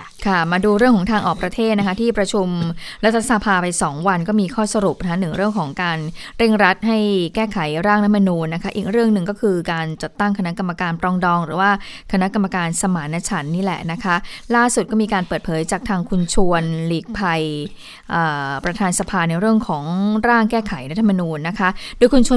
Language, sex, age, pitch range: Thai, female, 20-39, 170-215 Hz